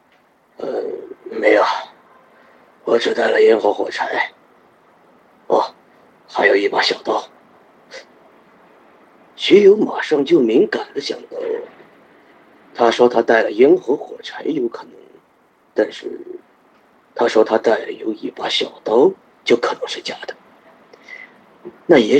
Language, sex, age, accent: Chinese, male, 40-59, native